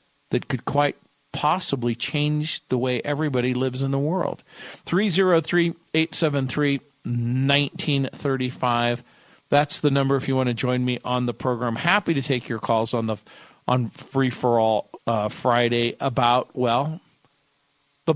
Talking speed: 140 wpm